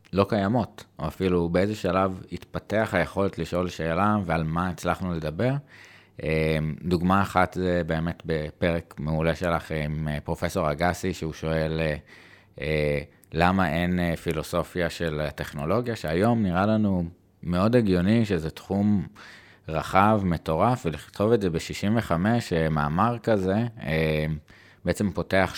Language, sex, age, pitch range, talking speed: Hebrew, male, 20-39, 80-105 Hz, 115 wpm